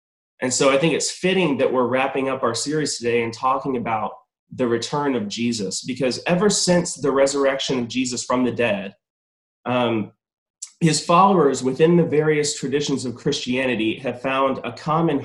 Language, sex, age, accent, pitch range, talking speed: English, male, 30-49, American, 120-155 Hz, 170 wpm